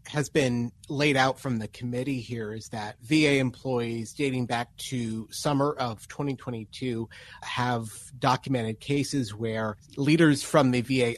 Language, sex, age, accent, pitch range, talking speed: English, male, 30-49, American, 110-130 Hz, 140 wpm